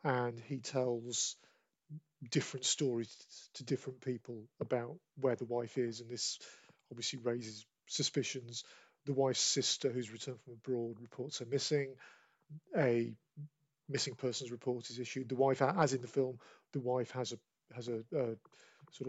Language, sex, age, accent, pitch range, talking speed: English, male, 40-59, British, 120-145 Hz, 150 wpm